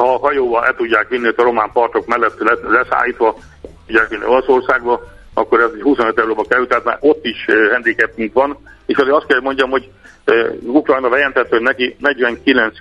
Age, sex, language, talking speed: 60-79, male, Hungarian, 165 wpm